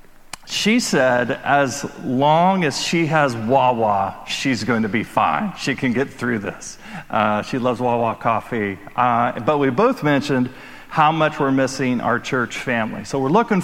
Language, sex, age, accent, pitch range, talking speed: English, male, 40-59, American, 125-150 Hz, 165 wpm